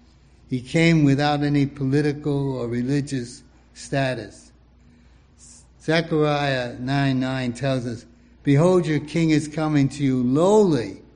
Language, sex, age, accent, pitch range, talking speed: English, male, 60-79, American, 115-165 Hz, 115 wpm